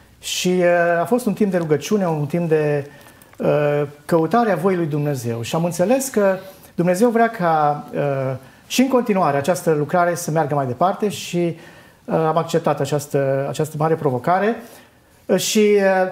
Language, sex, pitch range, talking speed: Romanian, male, 145-195 Hz, 165 wpm